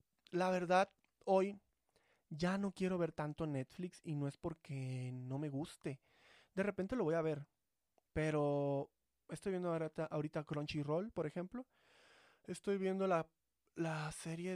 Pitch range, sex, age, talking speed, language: 145-185 Hz, male, 20-39, 140 wpm, Spanish